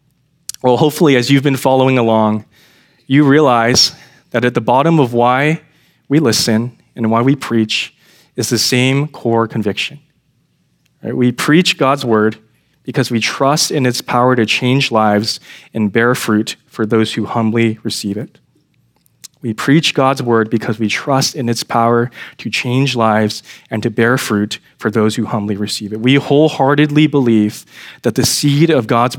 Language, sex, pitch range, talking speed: English, male, 115-145 Hz, 160 wpm